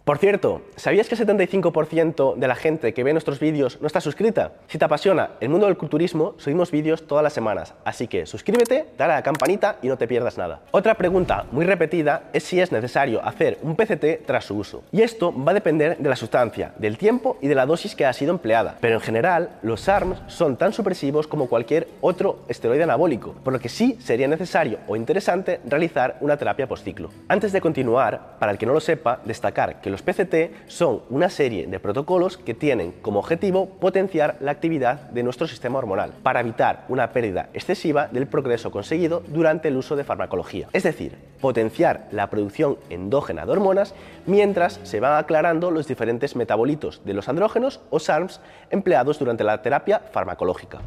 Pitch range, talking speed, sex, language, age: 130-185 Hz, 195 wpm, male, Spanish, 30-49